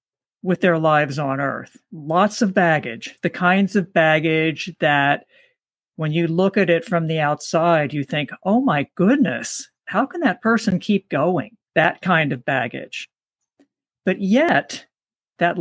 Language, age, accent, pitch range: English, 50-69, American, 160-210 Hz